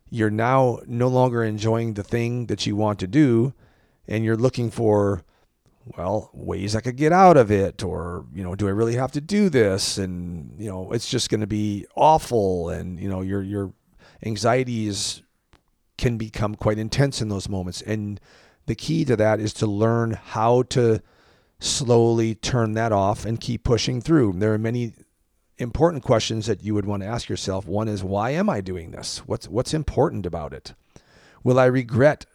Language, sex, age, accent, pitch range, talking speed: English, male, 40-59, American, 100-125 Hz, 185 wpm